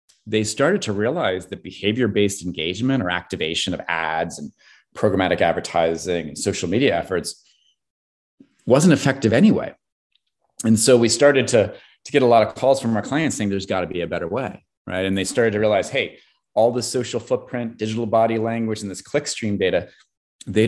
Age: 30-49